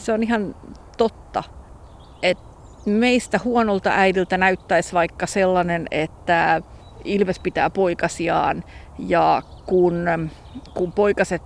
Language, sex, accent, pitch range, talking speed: Finnish, female, native, 180-230 Hz, 100 wpm